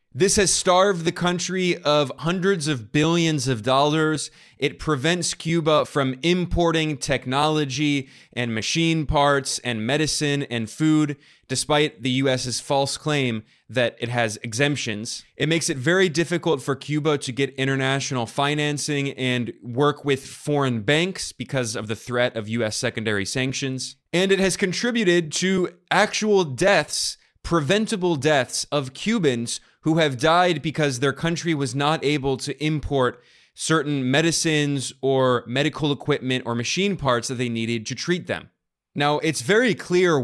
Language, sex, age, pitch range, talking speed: English, male, 20-39, 125-160 Hz, 145 wpm